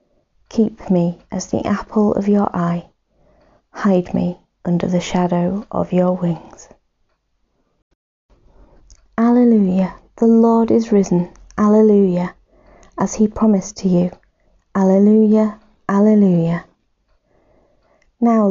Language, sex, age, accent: English, female, 30-49, British